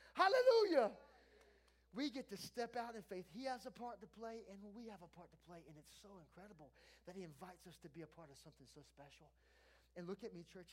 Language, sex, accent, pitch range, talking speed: English, male, American, 150-210 Hz, 235 wpm